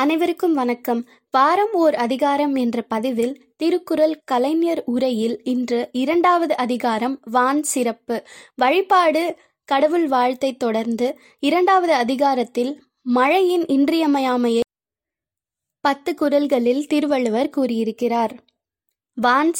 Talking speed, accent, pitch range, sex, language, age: 80 wpm, native, 245-325 Hz, female, Tamil, 20-39